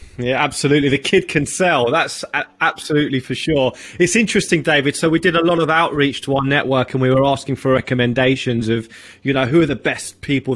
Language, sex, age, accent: English, male, 20-39, British